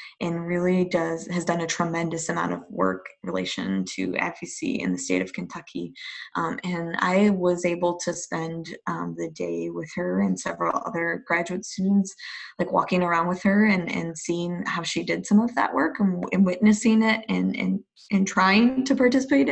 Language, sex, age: English, female, 20-39